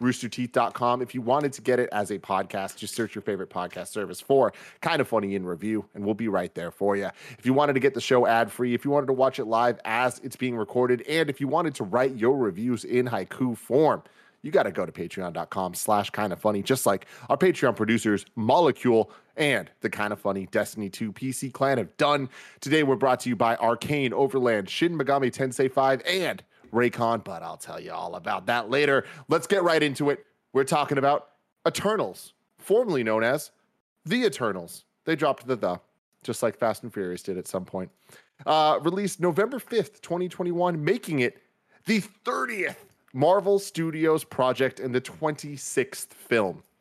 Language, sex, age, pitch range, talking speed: English, male, 30-49, 110-145 Hz, 195 wpm